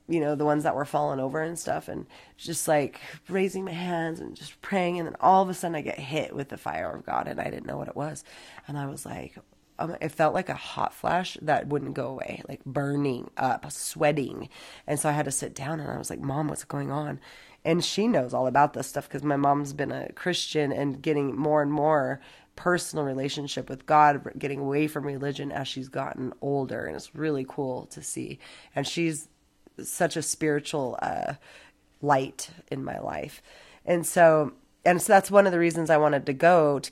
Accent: American